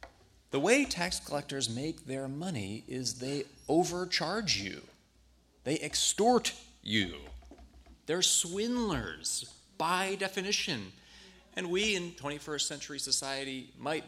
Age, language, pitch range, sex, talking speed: 30-49, English, 95-150 Hz, male, 105 wpm